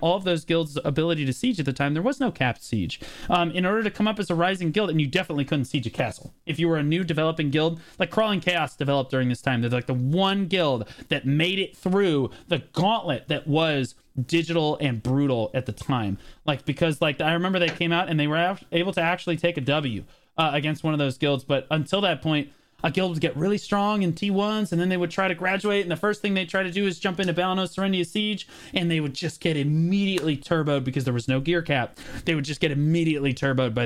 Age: 30-49